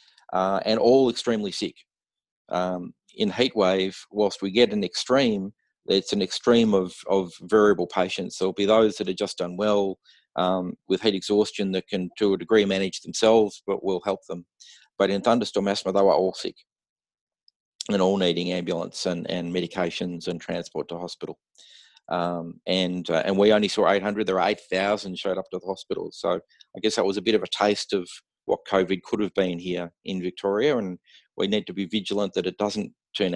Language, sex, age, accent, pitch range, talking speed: English, male, 40-59, Australian, 90-105 Hz, 195 wpm